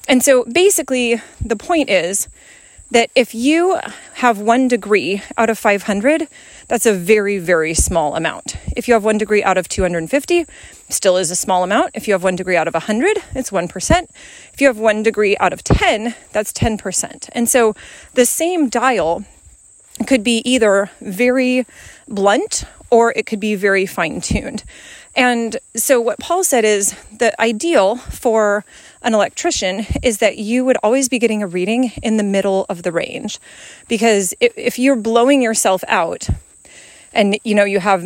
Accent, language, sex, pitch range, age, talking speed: American, English, female, 190-245 Hz, 30-49, 170 wpm